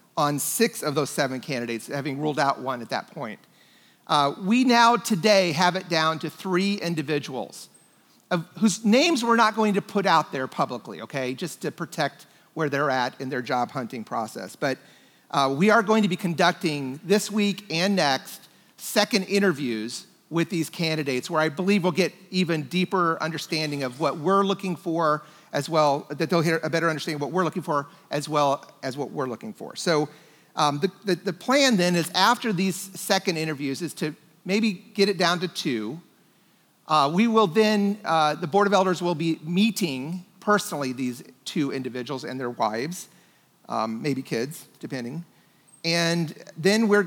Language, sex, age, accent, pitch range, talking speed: English, male, 40-59, American, 145-195 Hz, 180 wpm